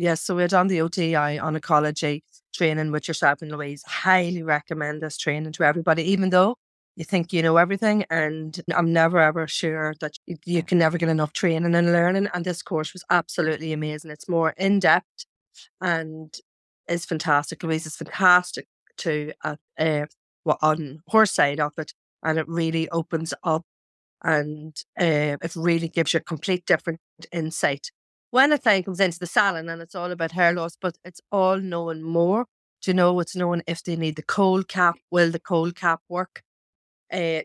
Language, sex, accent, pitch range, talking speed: English, female, Irish, 155-175 Hz, 180 wpm